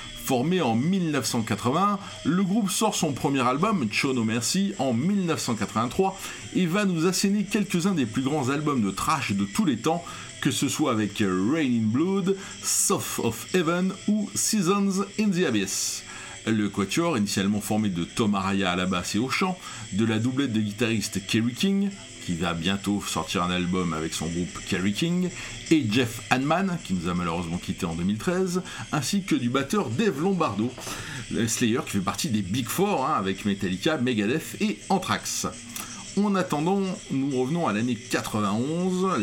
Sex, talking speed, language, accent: male, 180 wpm, French, French